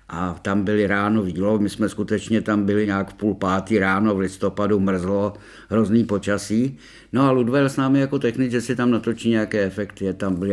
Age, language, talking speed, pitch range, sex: 60-79, Czech, 205 wpm, 100-125 Hz, male